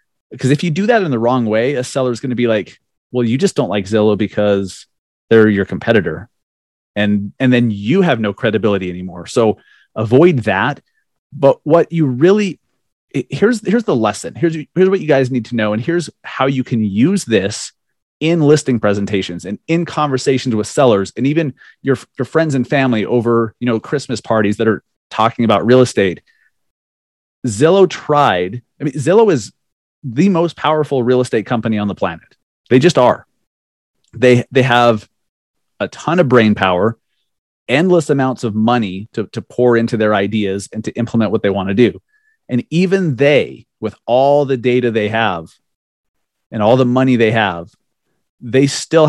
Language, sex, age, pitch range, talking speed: English, male, 30-49, 110-145 Hz, 180 wpm